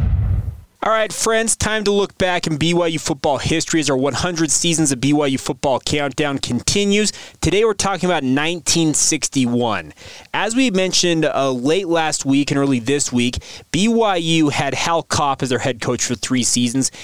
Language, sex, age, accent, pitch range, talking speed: English, male, 20-39, American, 125-170 Hz, 165 wpm